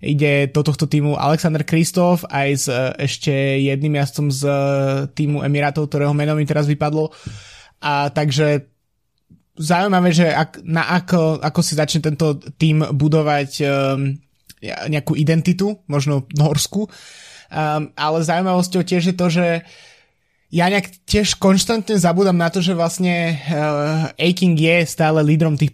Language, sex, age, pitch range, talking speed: Slovak, male, 20-39, 145-165 Hz, 140 wpm